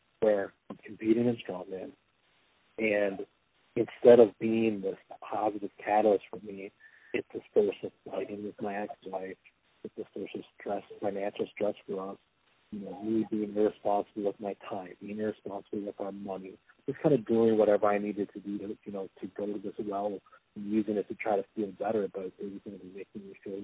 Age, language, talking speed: 40-59, English, 195 wpm